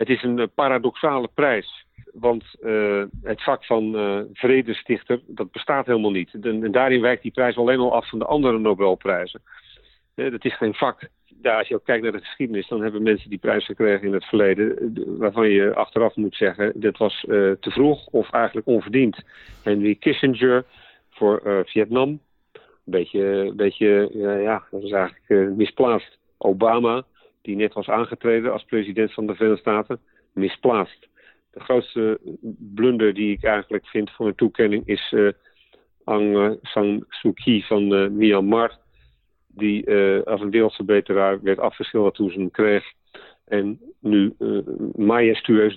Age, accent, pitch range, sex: 50-69, Dutch, 100-115 Hz, male